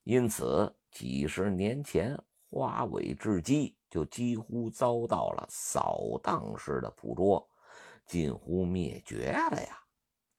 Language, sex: Chinese, male